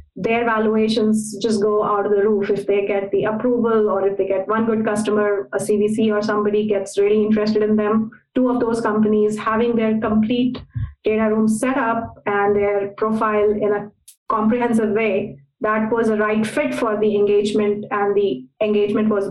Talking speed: 185 wpm